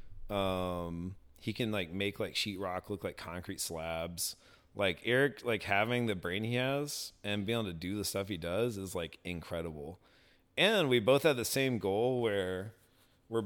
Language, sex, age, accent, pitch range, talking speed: English, male, 30-49, American, 90-105 Hz, 180 wpm